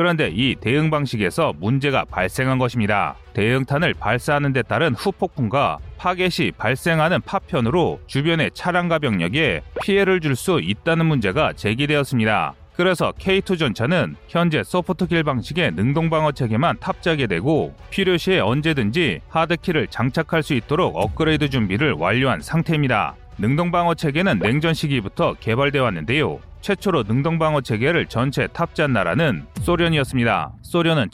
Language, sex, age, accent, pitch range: Korean, male, 30-49, native, 125-170 Hz